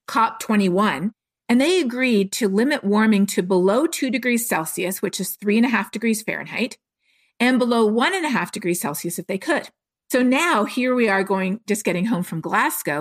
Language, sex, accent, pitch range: English, female, American, 190-240 Hz